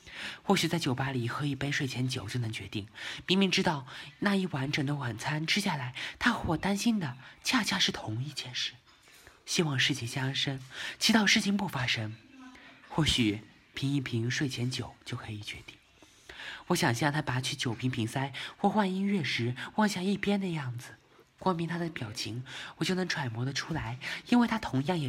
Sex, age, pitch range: male, 20-39, 125-170 Hz